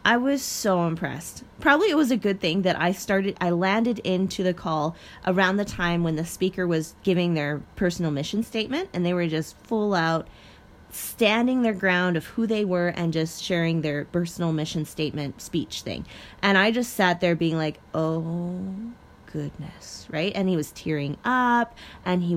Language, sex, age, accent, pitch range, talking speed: English, female, 20-39, American, 165-230 Hz, 185 wpm